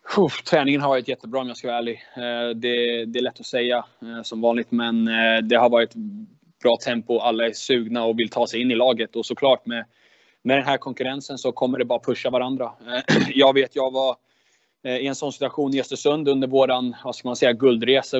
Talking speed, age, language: 200 wpm, 20-39, Swedish